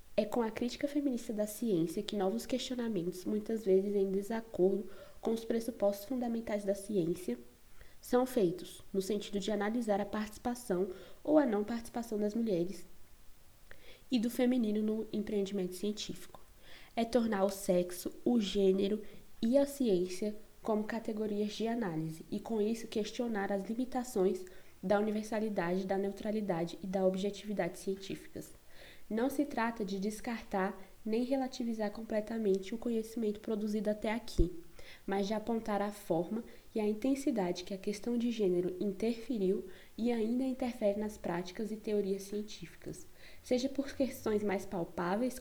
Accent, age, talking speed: Brazilian, 20-39, 140 wpm